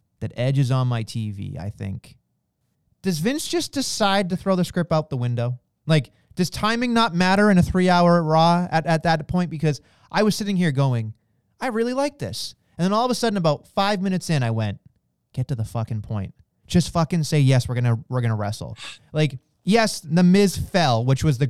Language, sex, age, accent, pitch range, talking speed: English, male, 30-49, American, 125-170 Hz, 215 wpm